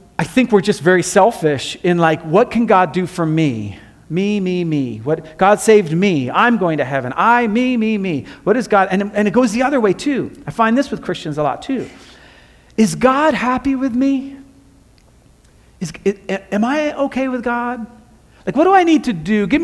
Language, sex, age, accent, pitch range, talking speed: English, male, 40-59, American, 175-235 Hz, 205 wpm